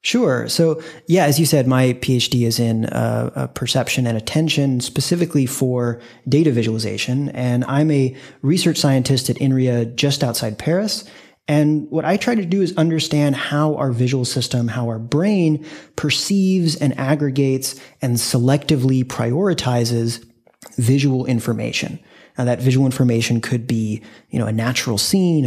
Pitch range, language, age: 120-150 Hz, English, 30-49